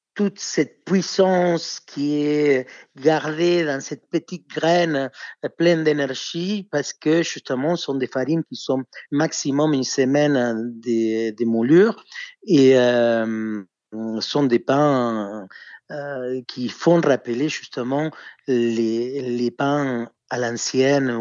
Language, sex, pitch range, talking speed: French, male, 120-155 Hz, 120 wpm